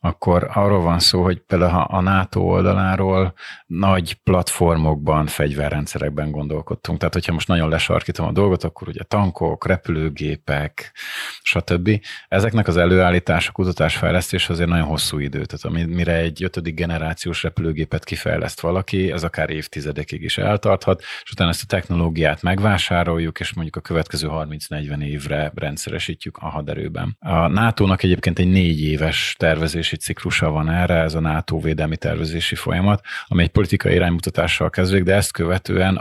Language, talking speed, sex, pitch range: Hungarian, 140 wpm, male, 80-95 Hz